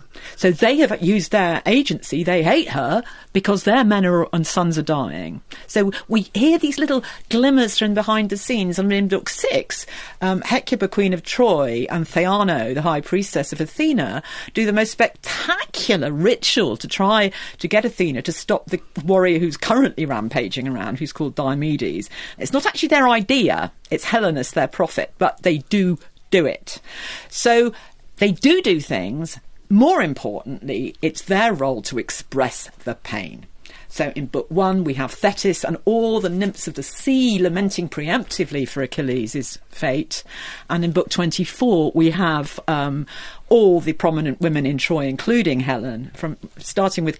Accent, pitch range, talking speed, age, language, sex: British, 150-215 Hz, 165 wpm, 50-69, English, female